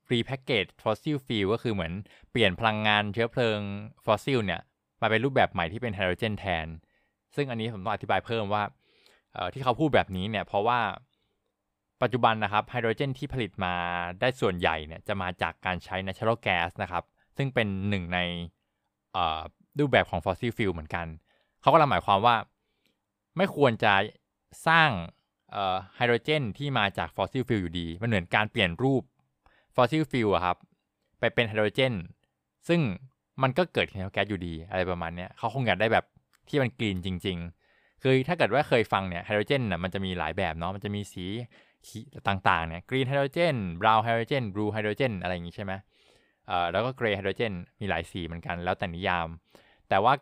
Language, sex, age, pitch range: Thai, male, 20-39, 90-120 Hz